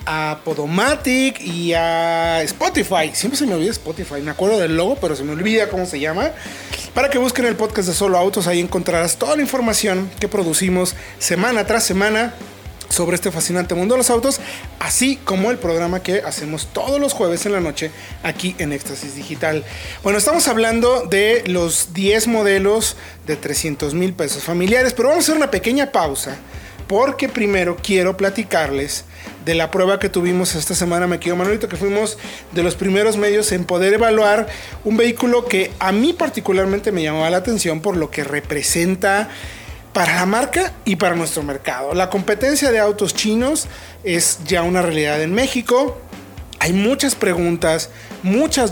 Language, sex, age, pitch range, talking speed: Spanish, male, 30-49, 170-220 Hz, 170 wpm